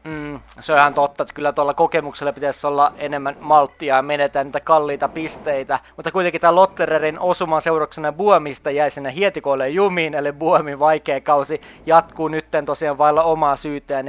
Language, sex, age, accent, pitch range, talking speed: Finnish, male, 20-39, native, 150-200 Hz, 160 wpm